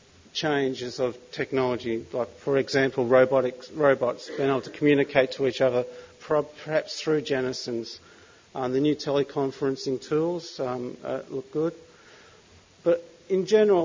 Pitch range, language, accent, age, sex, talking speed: 130-160 Hz, English, Australian, 40-59, male, 130 wpm